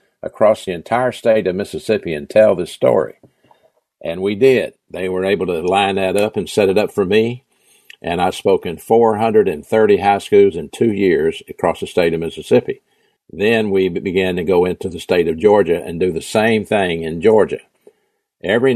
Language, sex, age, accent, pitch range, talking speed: English, male, 50-69, American, 90-120 Hz, 190 wpm